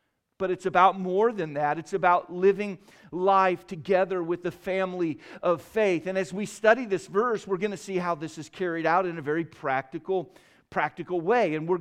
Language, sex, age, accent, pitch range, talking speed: English, male, 50-69, American, 175-215 Hz, 200 wpm